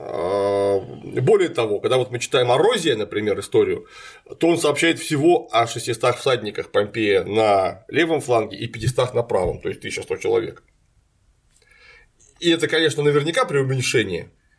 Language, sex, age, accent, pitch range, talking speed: Russian, male, 30-49, native, 120-170 Hz, 135 wpm